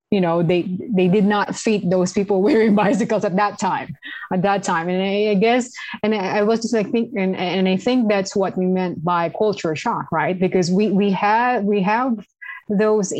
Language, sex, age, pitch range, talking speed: English, female, 20-39, 175-210 Hz, 210 wpm